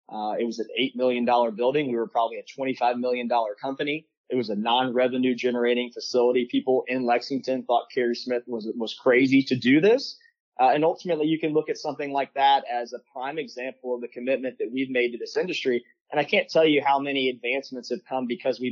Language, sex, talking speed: English, male, 215 wpm